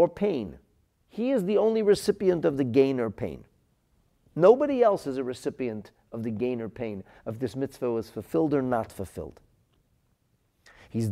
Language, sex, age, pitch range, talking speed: English, male, 50-69, 110-165 Hz, 155 wpm